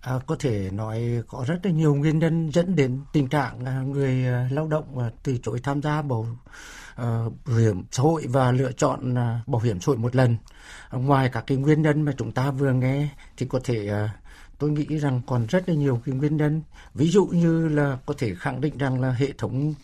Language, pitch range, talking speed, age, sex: Vietnamese, 125-160 Hz, 215 wpm, 60-79, male